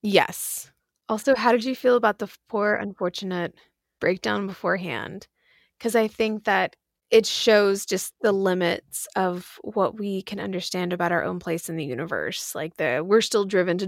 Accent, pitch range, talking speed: American, 170-195 Hz, 170 wpm